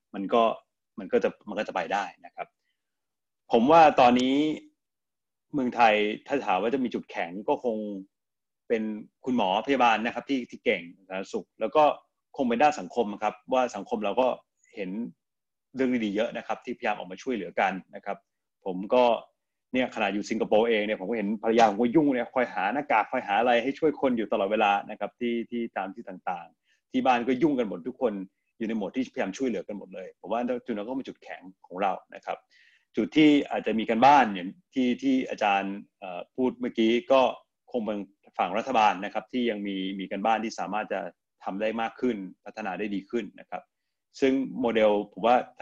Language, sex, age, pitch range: Thai, male, 30-49, 105-130 Hz